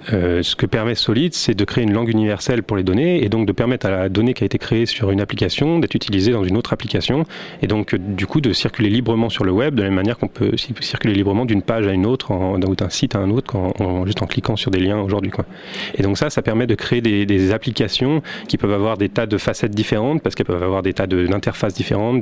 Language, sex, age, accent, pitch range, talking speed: French, male, 30-49, French, 100-125 Hz, 275 wpm